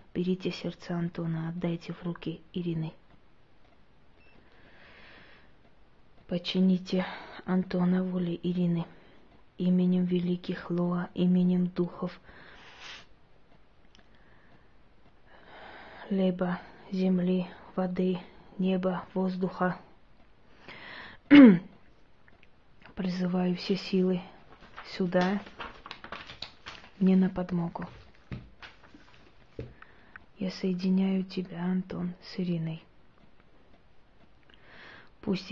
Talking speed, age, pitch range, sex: 60 wpm, 20-39, 175-185 Hz, female